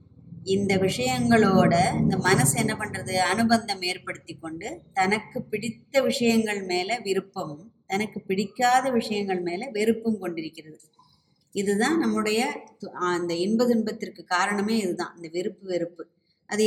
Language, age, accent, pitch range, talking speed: Tamil, 20-39, native, 180-225 Hz, 110 wpm